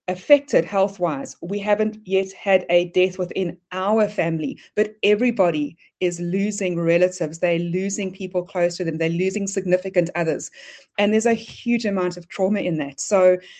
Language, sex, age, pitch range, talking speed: English, female, 30-49, 175-215 Hz, 160 wpm